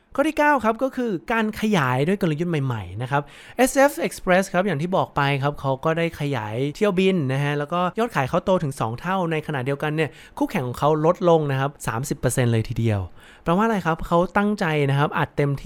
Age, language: 20-39, Thai